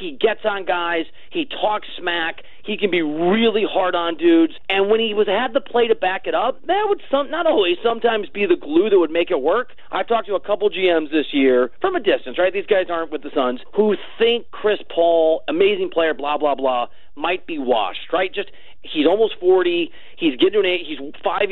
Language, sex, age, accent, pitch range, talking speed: English, male, 40-59, American, 155-250 Hz, 225 wpm